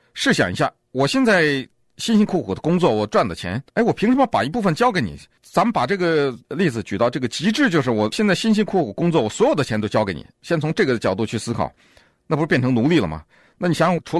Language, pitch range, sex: Chinese, 110-165 Hz, male